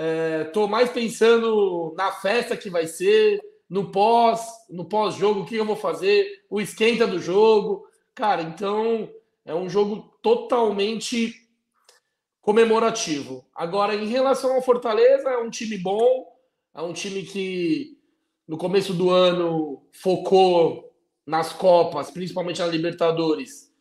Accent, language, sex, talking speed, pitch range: Brazilian, Portuguese, male, 130 wpm, 170-230 Hz